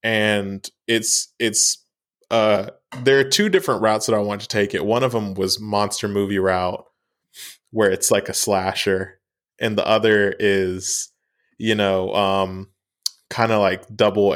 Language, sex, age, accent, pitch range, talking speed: English, male, 20-39, American, 100-145 Hz, 160 wpm